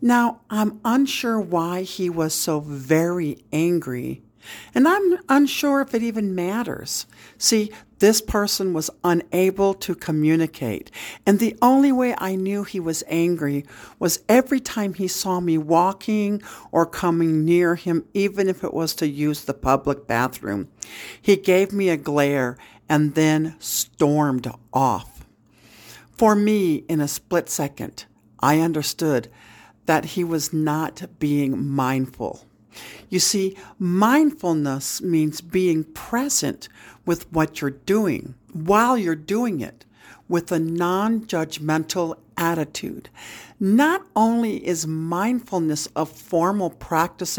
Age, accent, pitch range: 60-79, American, 145-200 Hz